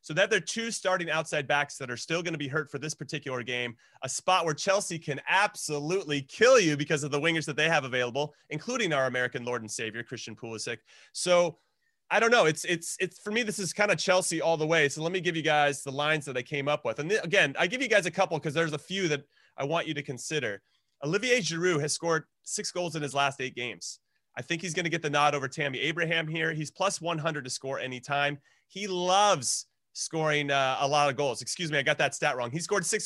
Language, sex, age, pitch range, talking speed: English, male, 30-49, 140-175 Hz, 255 wpm